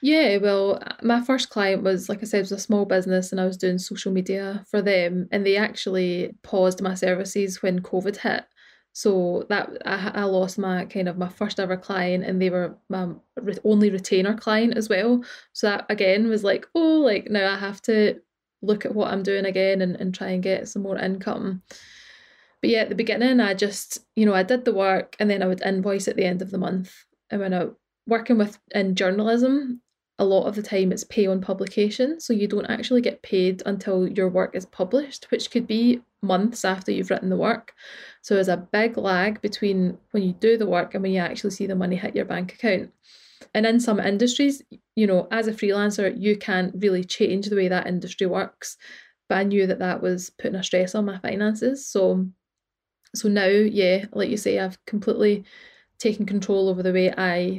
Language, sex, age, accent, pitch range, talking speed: English, female, 10-29, British, 185-215 Hz, 215 wpm